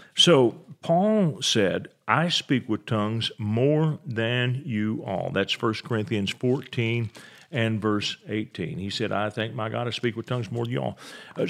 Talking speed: 170 wpm